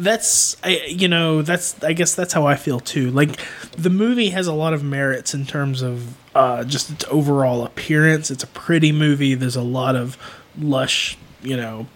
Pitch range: 130-160 Hz